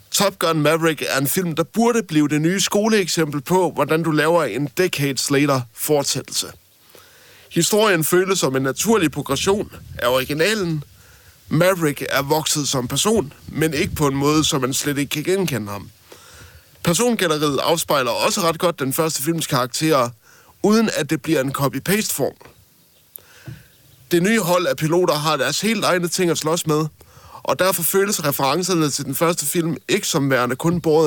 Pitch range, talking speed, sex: 140-180 Hz, 170 wpm, male